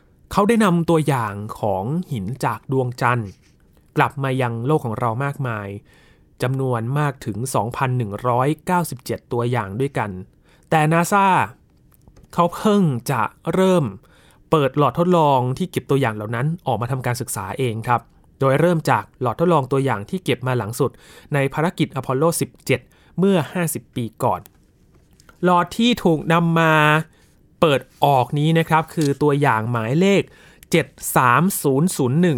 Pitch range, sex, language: 120-155 Hz, male, Thai